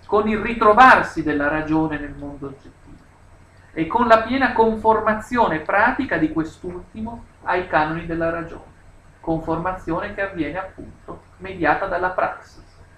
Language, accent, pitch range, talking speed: Italian, native, 145-195 Hz, 125 wpm